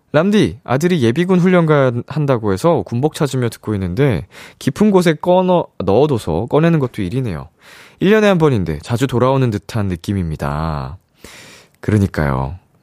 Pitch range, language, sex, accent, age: 90-150 Hz, Korean, male, native, 20-39